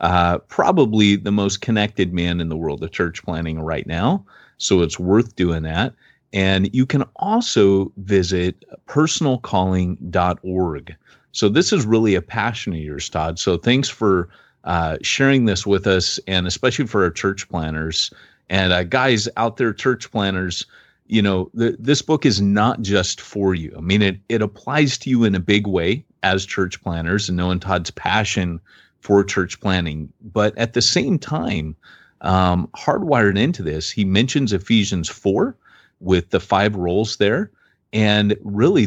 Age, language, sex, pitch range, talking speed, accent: 30-49, English, male, 90-110 Hz, 165 wpm, American